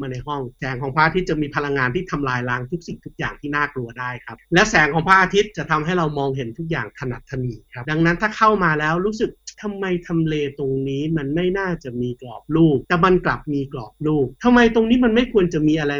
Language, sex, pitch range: Thai, male, 135-175 Hz